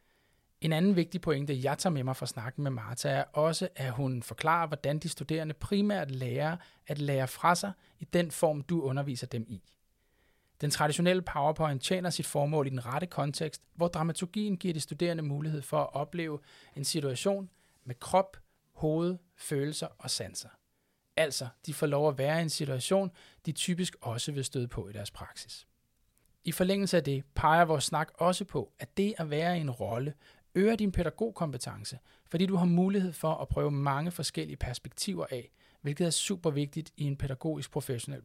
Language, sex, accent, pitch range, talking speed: Danish, male, native, 135-170 Hz, 180 wpm